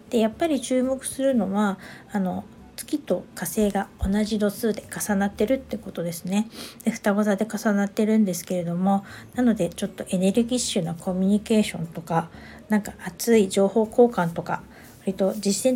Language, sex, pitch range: Japanese, female, 180-220 Hz